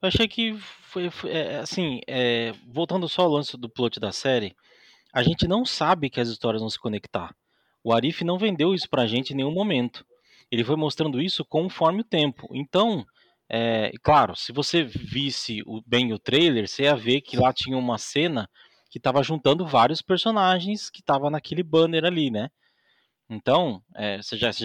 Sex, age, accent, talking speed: male, 20-39, Brazilian, 185 wpm